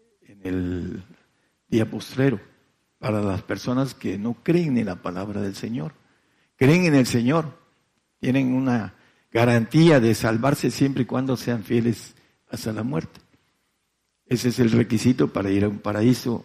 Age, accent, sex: 60-79, Mexican, male